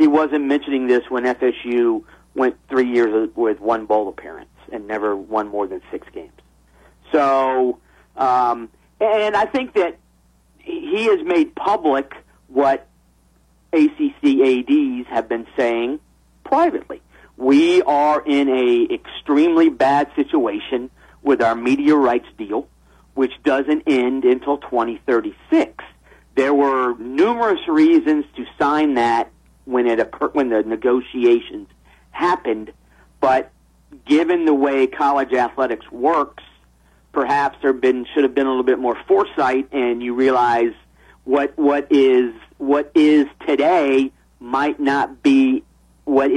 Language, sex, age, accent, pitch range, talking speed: English, male, 40-59, American, 120-155 Hz, 130 wpm